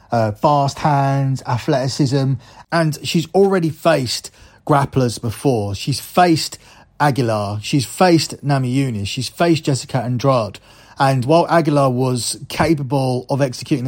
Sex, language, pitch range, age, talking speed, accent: male, English, 115-140 Hz, 30-49, 120 wpm, British